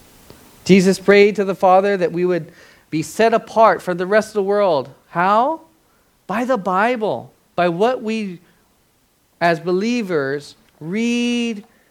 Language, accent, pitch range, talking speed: English, American, 165-220 Hz, 135 wpm